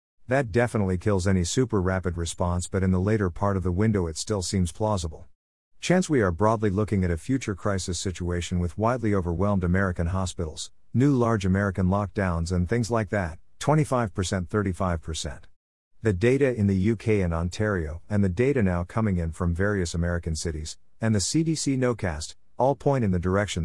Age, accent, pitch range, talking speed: 50-69, American, 90-115 Hz, 180 wpm